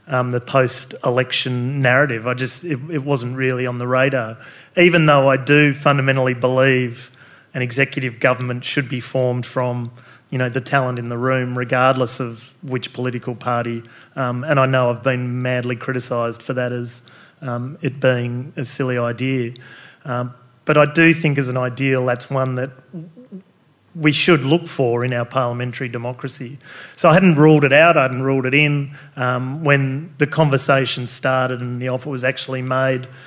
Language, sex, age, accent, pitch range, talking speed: English, male, 30-49, Australian, 125-145 Hz, 180 wpm